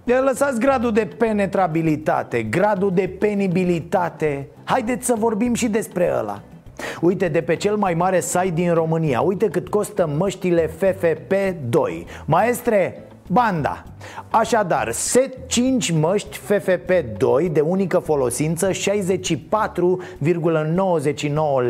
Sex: male